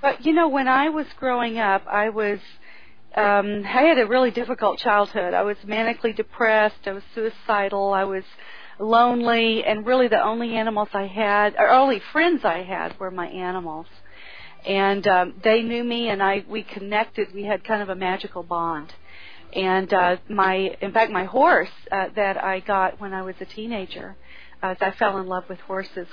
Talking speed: 175 wpm